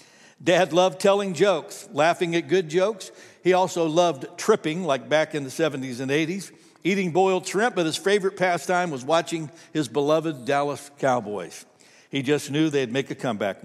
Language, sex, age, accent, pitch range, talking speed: English, male, 60-79, American, 140-180 Hz, 170 wpm